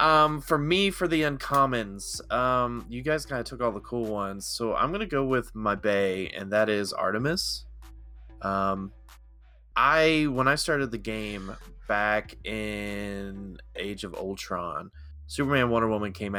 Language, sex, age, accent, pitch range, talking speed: English, male, 20-39, American, 95-120 Hz, 160 wpm